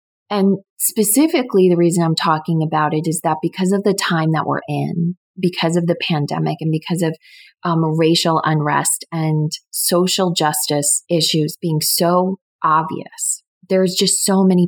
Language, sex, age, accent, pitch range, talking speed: English, female, 30-49, American, 155-190 Hz, 155 wpm